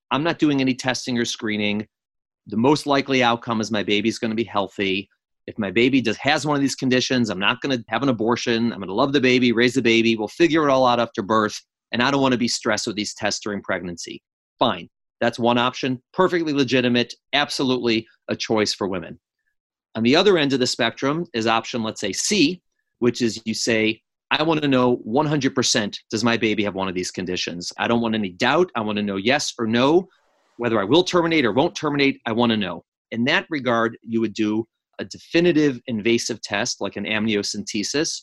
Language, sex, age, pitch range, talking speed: English, male, 30-49, 110-130 Hz, 210 wpm